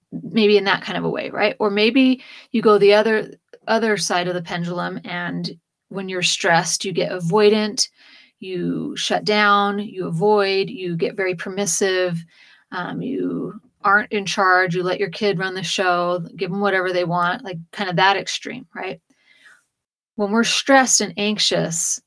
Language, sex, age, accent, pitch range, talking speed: English, female, 30-49, American, 180-220 Hz, 170 wpm